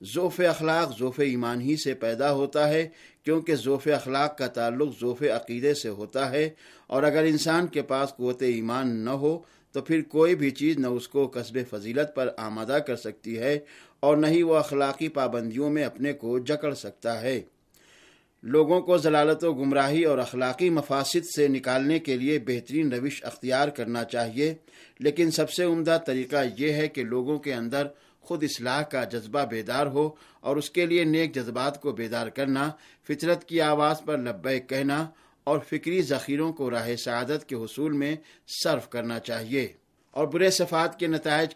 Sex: male